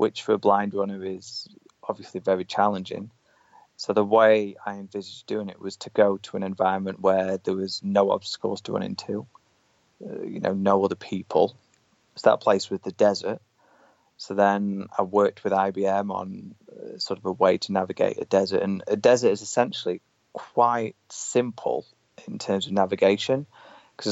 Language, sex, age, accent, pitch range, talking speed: English, male, 20-39, British, 95-110 Hz, 175 wpm